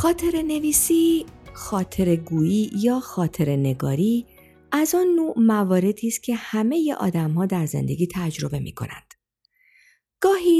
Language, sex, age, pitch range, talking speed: Persian, female, 50-69, 165-240 Hz, 130 wpm